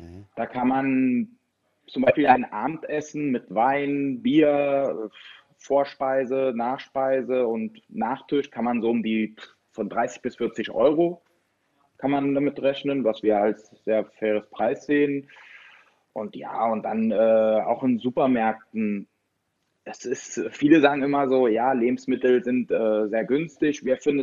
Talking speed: 140 wpm